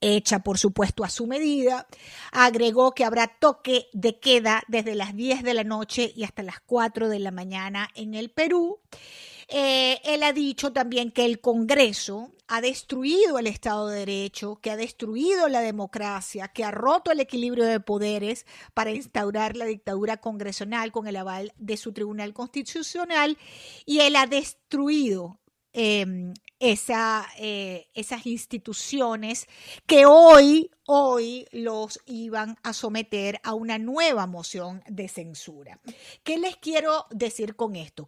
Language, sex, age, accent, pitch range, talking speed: Spanish, female, 50-69, American, 210-275 Hz, 145 wpm